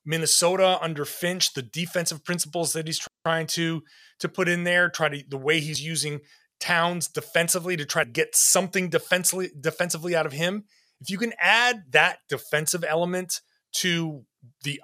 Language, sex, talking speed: English, male, 165 wpm